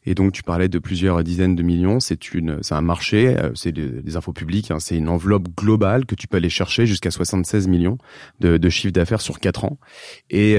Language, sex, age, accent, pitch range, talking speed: French, male, 30-49, French, 85-105 Hz, 220 wpm